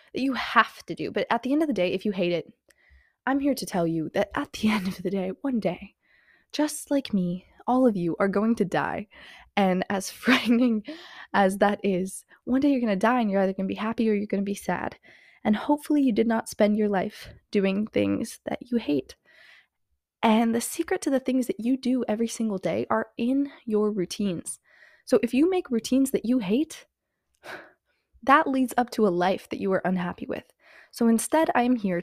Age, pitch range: 20-39, 190-245 Hz